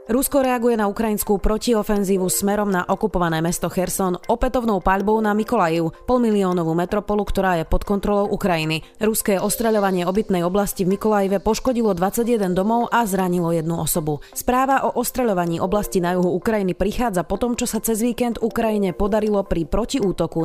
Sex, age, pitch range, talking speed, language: female, 30-49, 180-220 Hz, 150 wpm, Slovak